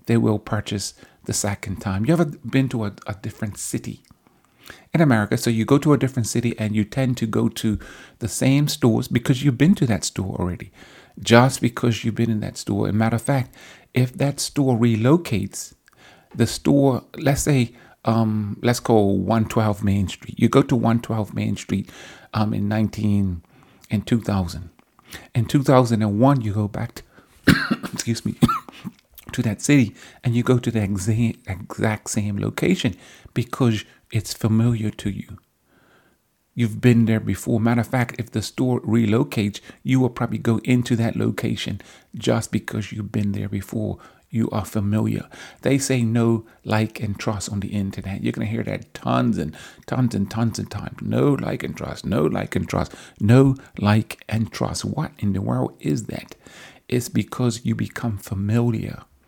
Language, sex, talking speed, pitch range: English, male, 175 wpm, 105-125 Hz